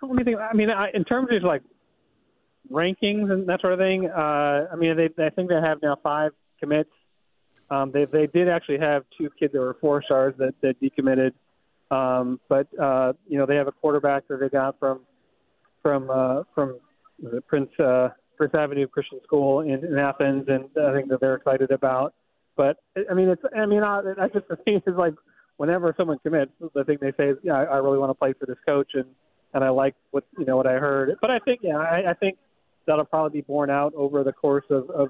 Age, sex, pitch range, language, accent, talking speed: 30-49, male, 130-155 Hz, English, American, 225 wpm